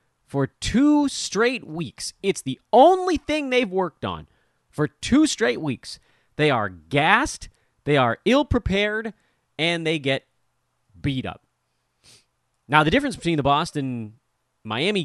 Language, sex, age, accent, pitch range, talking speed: English, male, 30-49, American, 115-170 Hz, 130 wpm